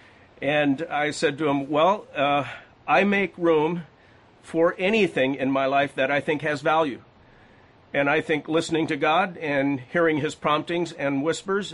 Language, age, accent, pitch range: English, 50-69, American, 145-170 Hz